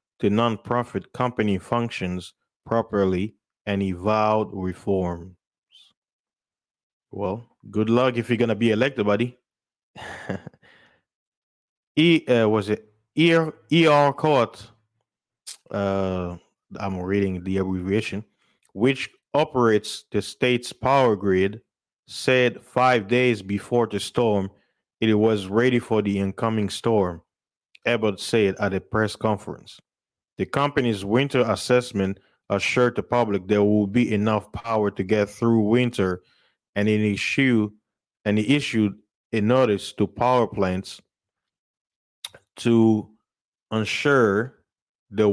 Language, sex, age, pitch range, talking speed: English, male, 30-49, 100-120 Hz, 115 wpm